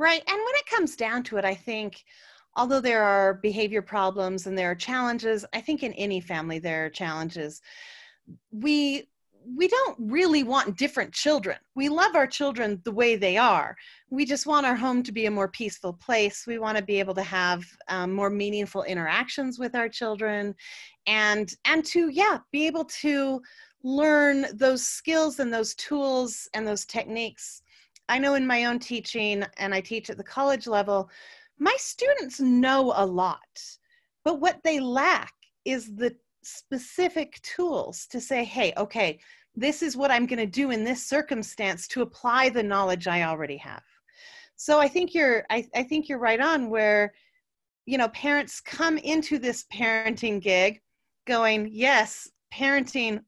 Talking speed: 170 wpm